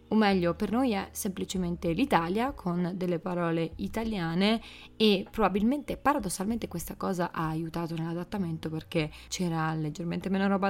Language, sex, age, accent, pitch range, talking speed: Italian, female, 20-39, native, 170-195 Hz, 135 wpm